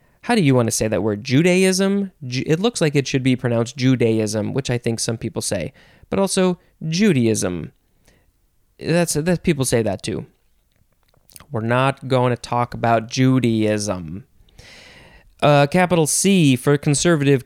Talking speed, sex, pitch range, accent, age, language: 150 wpm, male, 120-165 Hz, American, 20-39, English